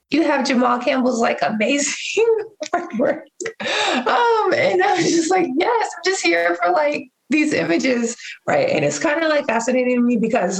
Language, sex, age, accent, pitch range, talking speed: English, female, 20-39, American, 195-285 Hz, 175 wpm